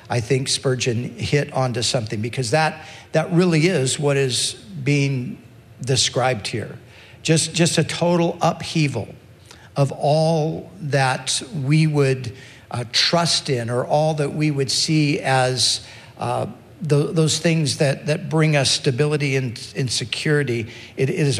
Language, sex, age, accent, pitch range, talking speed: English, male, 60-79, American, 120-160 Hz, 145 wpm